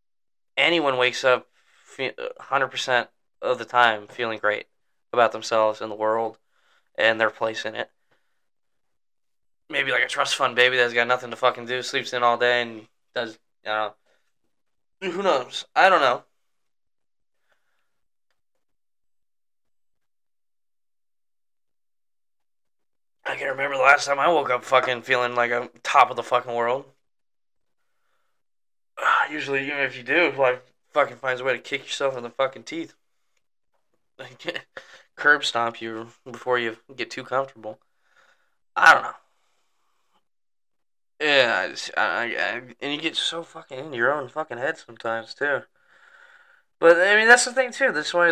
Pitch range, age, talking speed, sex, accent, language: 115-165 Hz, 10-29, 145 wpm, male, American, English